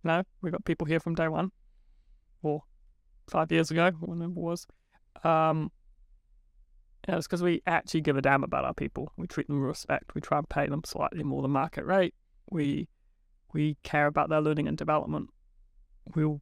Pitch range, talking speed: 140-165 Hz, 190 wpm